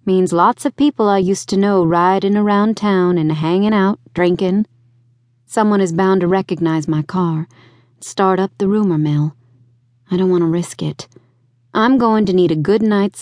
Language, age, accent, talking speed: English, 30-49, American, 180 wpm